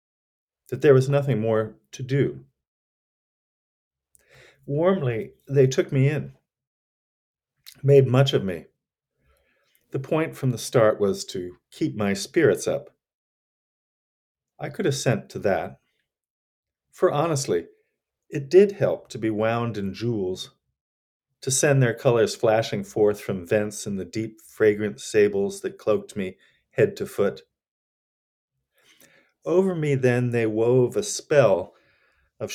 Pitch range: 110-140 Hz